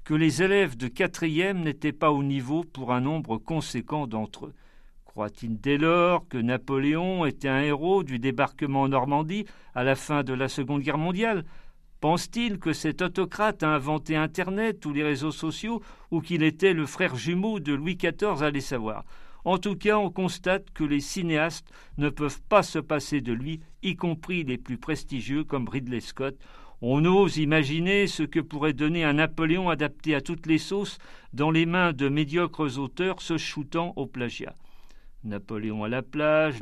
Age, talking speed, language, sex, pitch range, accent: 50-69, 180 wpm, French, male, 140-175 Hz, French